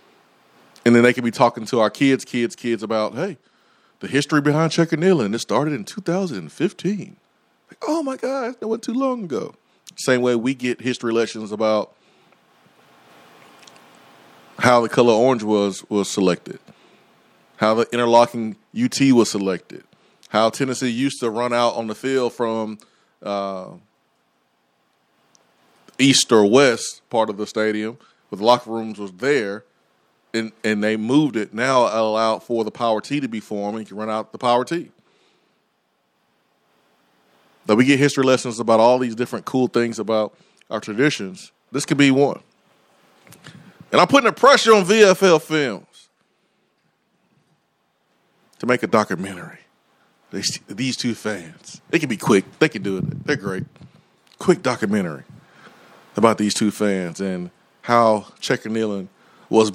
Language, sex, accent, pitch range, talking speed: English, male, American, 110-135 Hz, 155 wpm